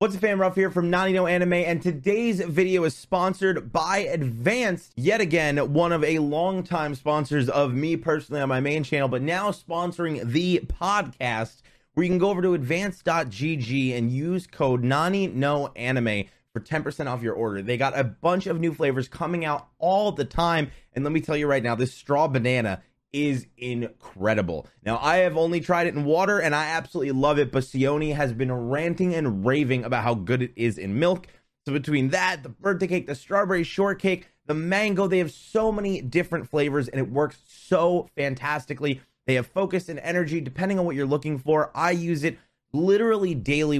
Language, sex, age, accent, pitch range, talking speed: English, male, 30-49, American, 135-175 Hz, 195 wpm